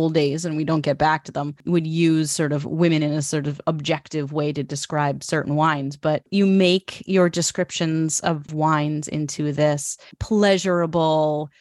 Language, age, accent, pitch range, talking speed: English, 30-49, American, 155-185 Hz, 170 wpm